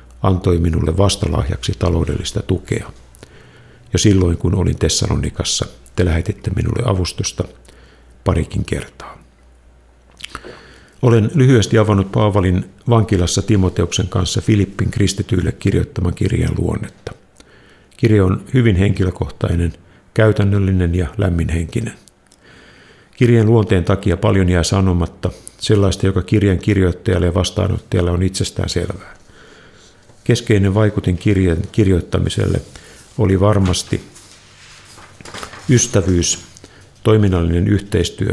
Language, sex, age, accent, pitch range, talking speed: Finnish, male, 50-69, native, 90-110 Hz, 90 wpm